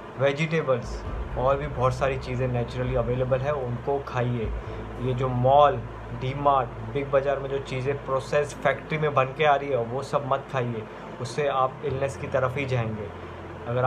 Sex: male